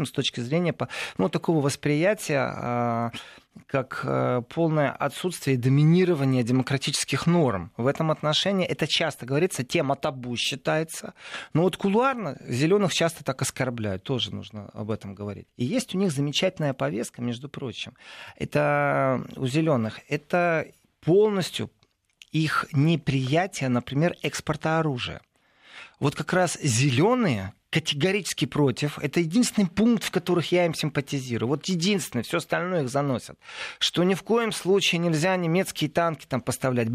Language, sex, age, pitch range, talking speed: Russian, male, 30-49, 135-175 Hz, 135 wpm